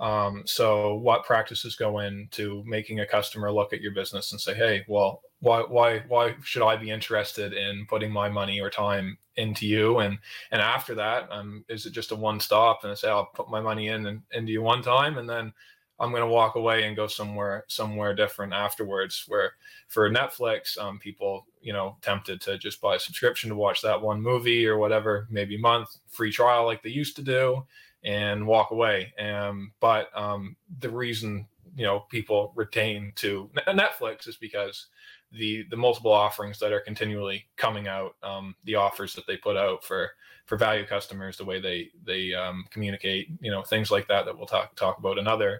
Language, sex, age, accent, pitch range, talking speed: English, male, 20-39, American, 100-115 Hz, 205 wpm